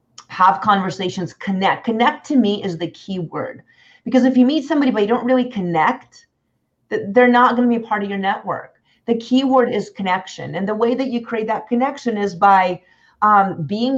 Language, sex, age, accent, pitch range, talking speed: English, female, 30-49, American, 170-230 Hz, 200 wpm